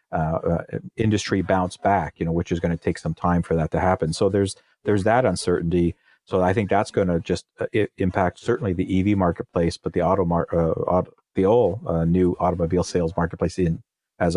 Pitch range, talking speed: 90-110 Hz, 215 wpm